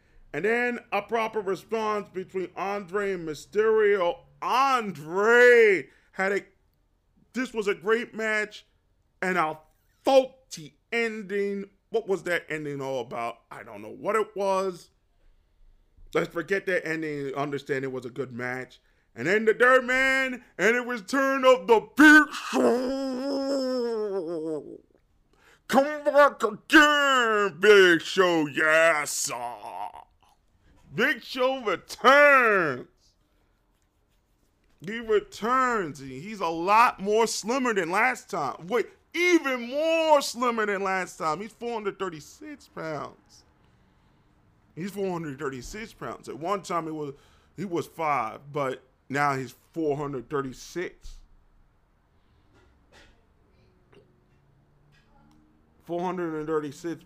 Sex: male